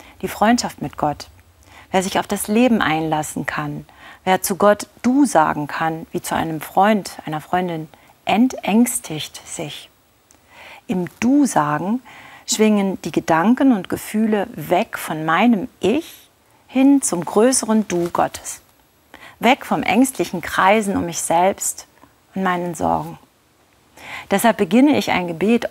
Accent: German